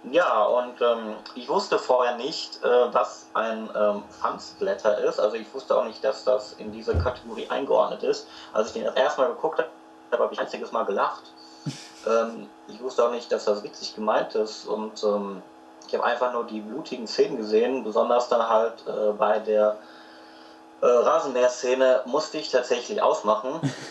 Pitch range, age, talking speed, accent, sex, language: 105-125 Hz, 30-49, 170 wpm, German, male, English